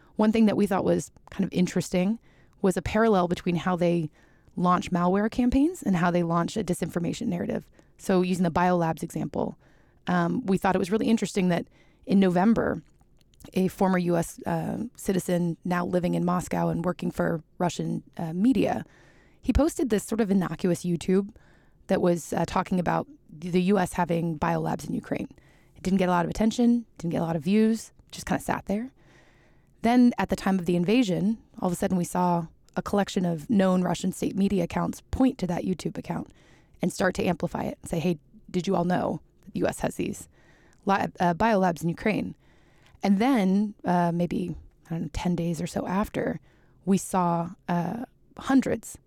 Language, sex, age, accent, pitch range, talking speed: Danish, female, 20-39, American, 175-205 Hz, 185 wpm